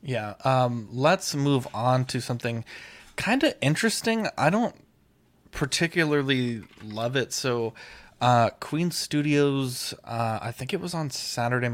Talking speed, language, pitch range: 135 wpm, English, 115-135 Hz